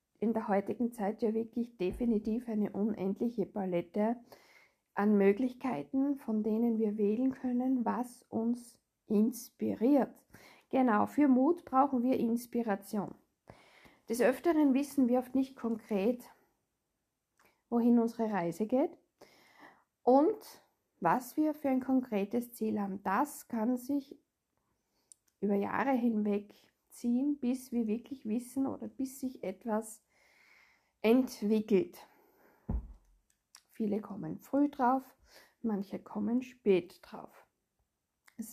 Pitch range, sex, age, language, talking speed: 215-260 Hz, female, 50-69, German, 110 wpm